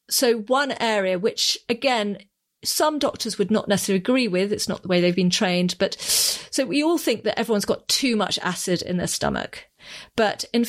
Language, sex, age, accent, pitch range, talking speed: English, female, 40-59, British, 185-225 Hz, 195 wpm